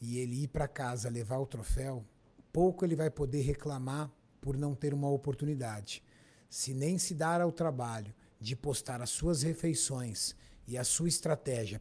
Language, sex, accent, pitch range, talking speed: Portuguese, male, Brazilian, 125-165 Hz, 170 wpm